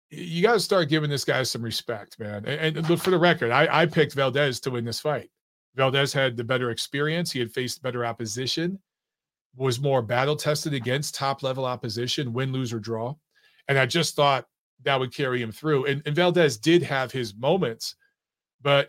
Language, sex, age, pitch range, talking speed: English, male, 40-59, 120-155 Hz, 195 wpm